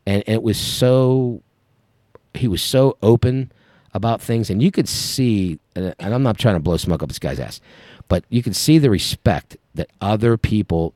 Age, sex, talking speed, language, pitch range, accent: 50-69, male, 195 wpm, English, 85-115 Hz, American